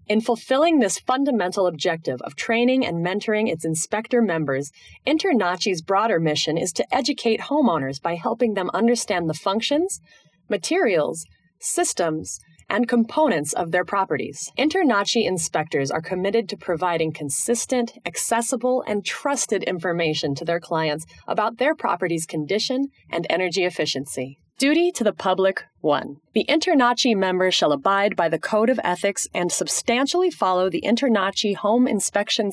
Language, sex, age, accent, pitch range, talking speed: English, female, 30-49, American, 170-245 Hz, 140 wpm